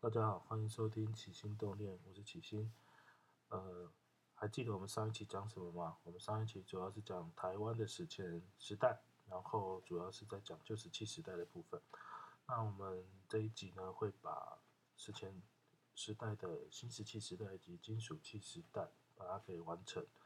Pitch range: 95-115 Hz